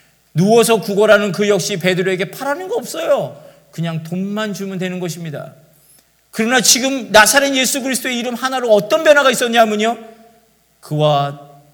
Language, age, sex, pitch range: Korean, 40-59, male, 135-190 Hz